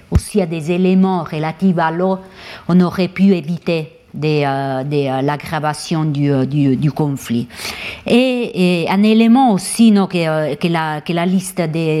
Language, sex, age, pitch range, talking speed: French, female, 50-69, 160-190 Hz, 165 wpm